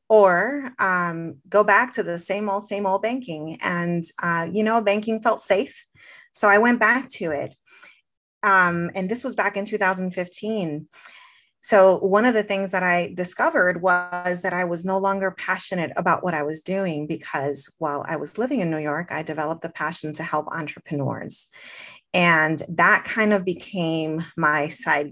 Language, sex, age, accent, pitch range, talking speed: English, female, 30-49, American, 155-205 Hz, 175 wpm